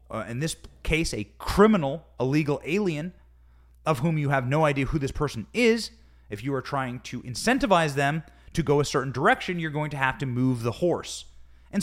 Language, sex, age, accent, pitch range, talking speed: English, male, 30-49, American, 100-170 Hz, 205 wpm